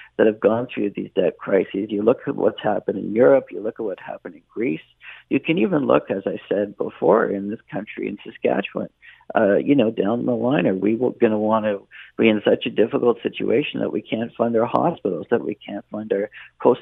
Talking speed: 230 wpm